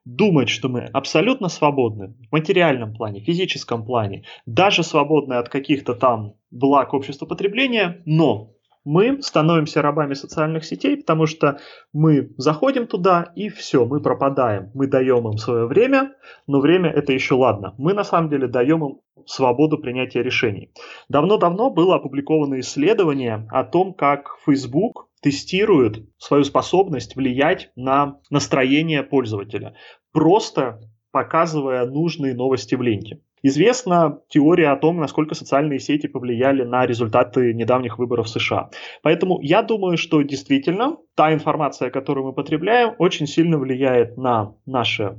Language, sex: Russian, male